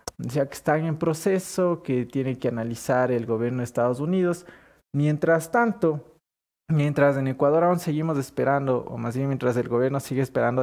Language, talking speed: English, 175 wpm